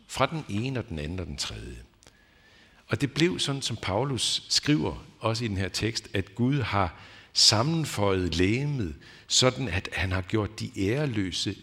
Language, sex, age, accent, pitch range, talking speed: Danish, male, 60-79, native, 90-115 Hz, 170 wpm